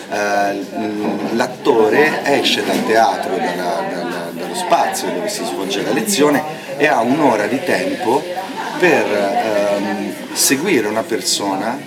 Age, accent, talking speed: 30-49, native, 100 wpm